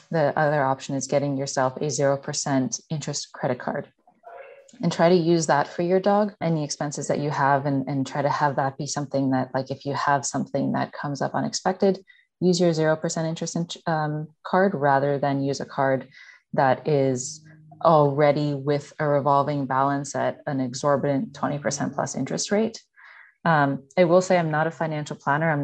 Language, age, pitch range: English, 20-39, 140-165 Hz